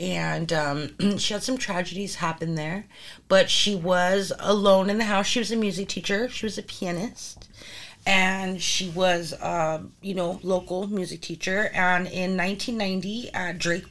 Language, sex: English, female